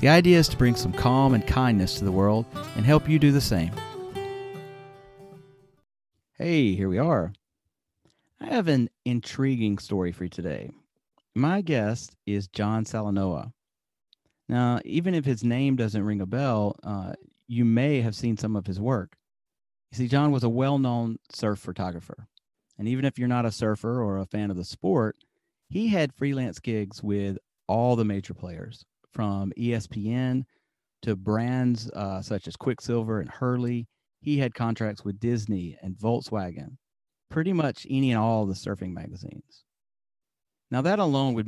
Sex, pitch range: male, 100-130 Hz